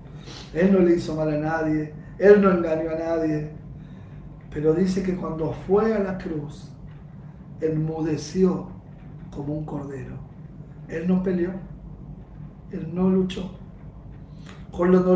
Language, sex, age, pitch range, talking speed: Spanish, male, 40-59, 155-195 Hz, 125 wpm